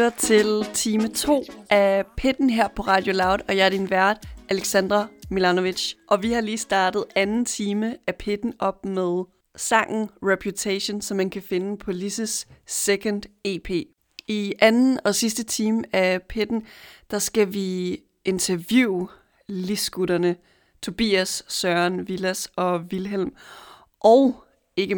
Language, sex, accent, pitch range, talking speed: Danish, female, native, 185-225 Hz, 135 wpm